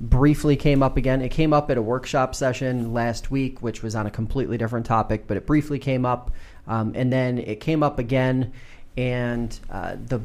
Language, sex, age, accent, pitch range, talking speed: English, male, 30-49, American, 115-145 Hz, 205 wpm